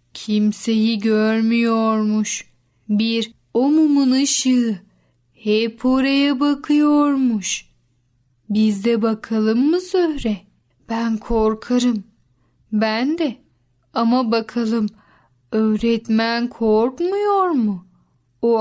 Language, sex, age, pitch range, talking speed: Turkish, female, 10-29, 215-255 Hz, 75 wpm